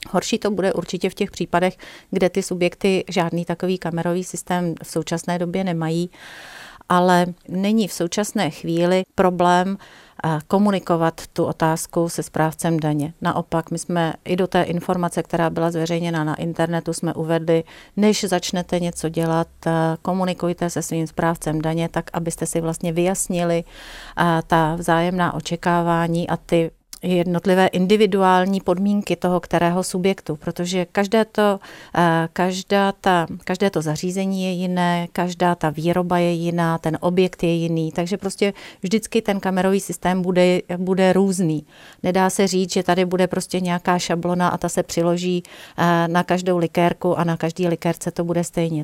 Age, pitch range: 40-59, 165-185 Hz